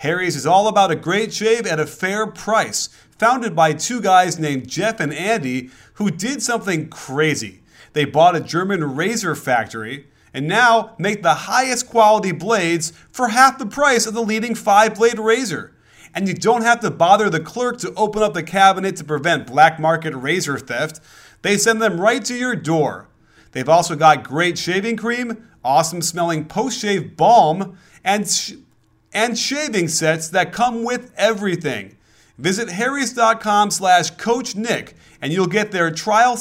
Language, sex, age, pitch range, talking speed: English, male, 30-49, 160-225 Hz, 160 wpm